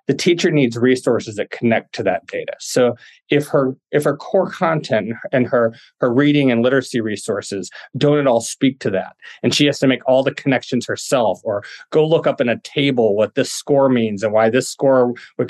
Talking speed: 210 wpm